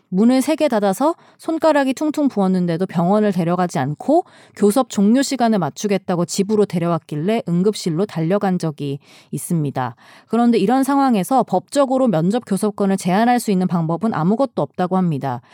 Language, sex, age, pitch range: Korean, female, 20-39, 175-240 Hz